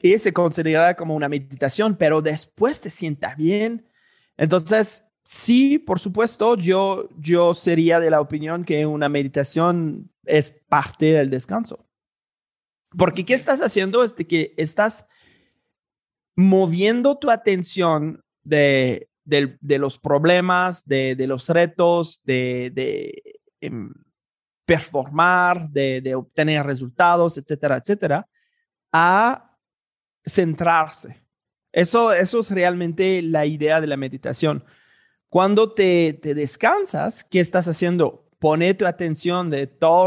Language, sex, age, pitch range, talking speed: Spanish, male, 30-49, 150-190 Hz, 120 wpm